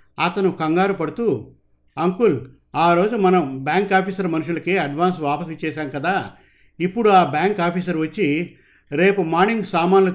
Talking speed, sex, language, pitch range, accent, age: 130 wpm, male, Telugu, 145-185 Hz, native, 50-69